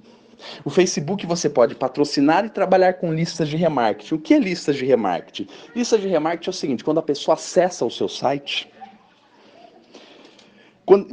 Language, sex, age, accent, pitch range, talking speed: Portuguese, male, 40-59, Brazilian, 145-195 Hz, 165 wpm